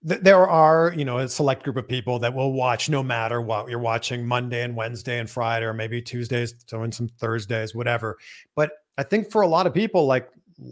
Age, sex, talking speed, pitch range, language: 40-59, male, 220 wpm, 120-160 Hz, English